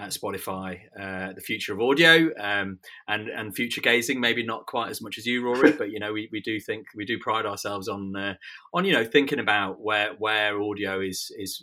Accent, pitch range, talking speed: British, 95-110 Hz, 220 wpm